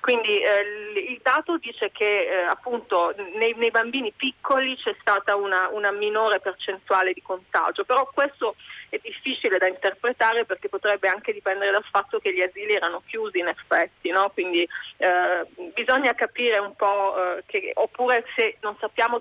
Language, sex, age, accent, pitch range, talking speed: Italian, female, 30-49, native, 195-280 Hz, 160 wpm